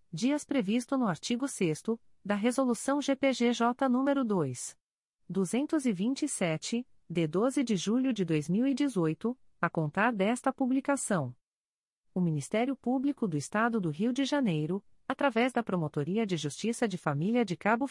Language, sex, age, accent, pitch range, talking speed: Portuguese, female, 40-59, Brazilian, 175-250 Hz, 130 wpm